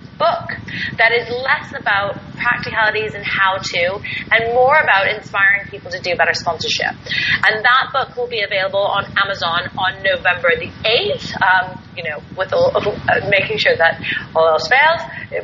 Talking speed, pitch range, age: 160 wpm, 195-250 Hz, 30-49